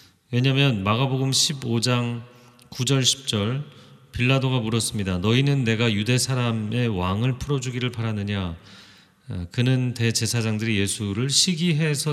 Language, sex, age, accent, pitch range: Korean, male, 30-49, native, 105-140 Hz